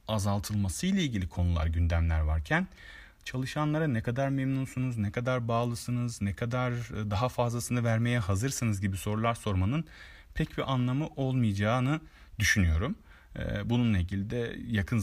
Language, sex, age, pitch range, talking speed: Turkish, male, 40-59, 90-115 Hz, 125 wpm